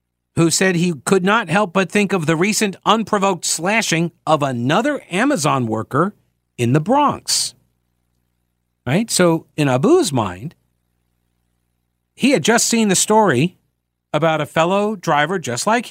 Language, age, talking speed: English, 50-69, 140 wpm